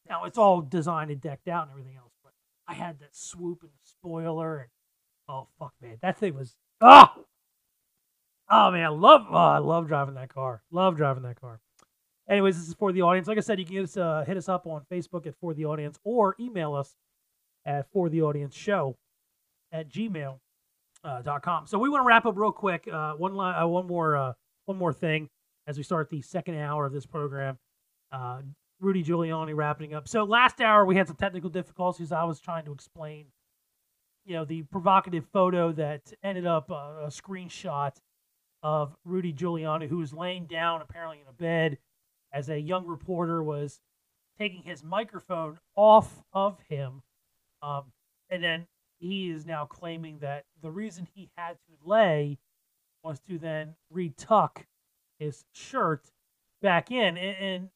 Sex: male